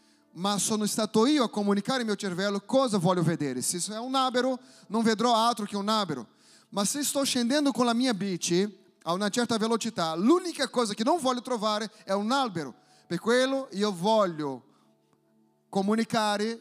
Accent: Brazilian